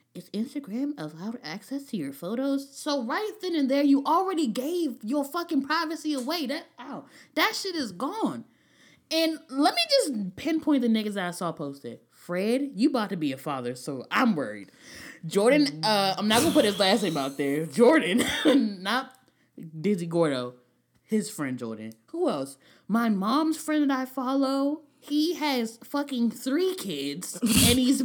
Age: 10-29